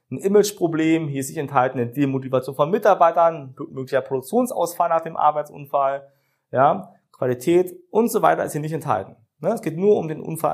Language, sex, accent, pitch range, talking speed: German, male, German, 130-180 Hz, 170 wpm